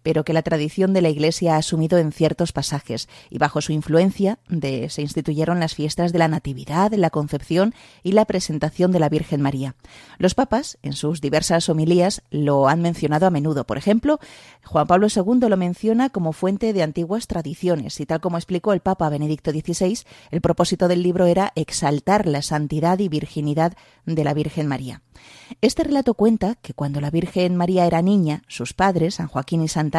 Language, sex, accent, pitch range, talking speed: Spanish, female, Spanish, 150-185 Hz, 185 wpm